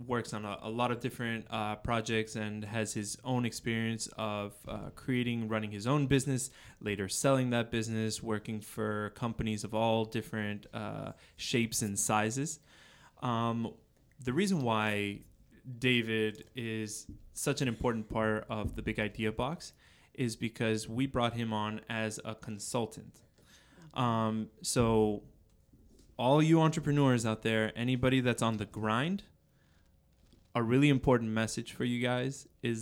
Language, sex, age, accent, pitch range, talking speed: English, male, 20-39, American, 105-125 Hz, 145 wpm